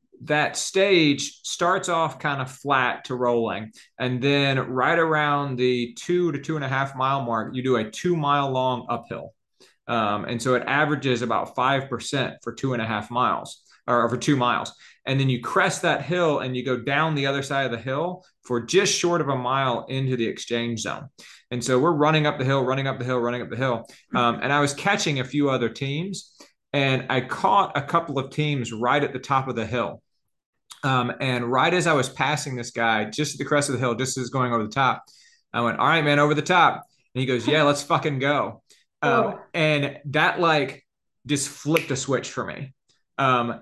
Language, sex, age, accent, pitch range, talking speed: English, male, 30-49, American, 125-155 Hz, 215 wpm